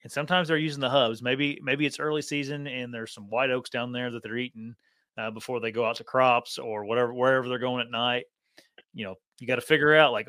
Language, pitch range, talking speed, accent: English, 115-130 Hz, 250 wpm, American